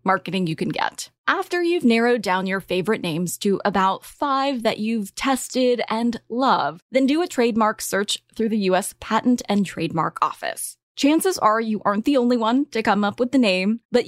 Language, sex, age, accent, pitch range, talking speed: English, female, 20-39, American, 190-255 Hz, 190 wpm